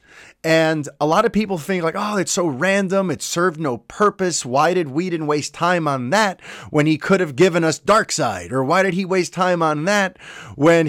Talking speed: 210 wpm